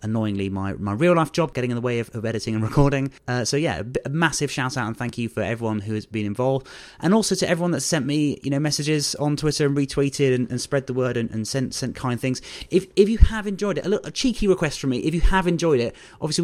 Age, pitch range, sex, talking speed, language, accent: 30-49, 110-145 Hz, male, 280 wpm, English, British